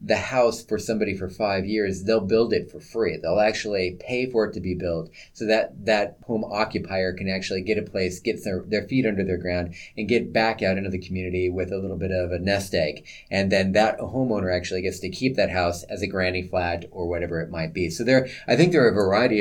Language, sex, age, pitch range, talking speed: English, male, 30-49, 90-110 Hz, 245 wpm